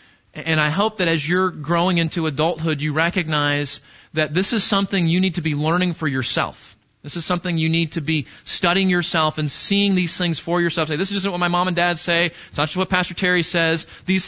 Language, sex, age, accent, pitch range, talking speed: English, male, 30-49, American, 145-180 Hz, 225 wpm